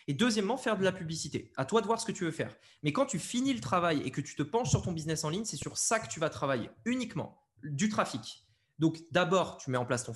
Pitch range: 140-205 Hz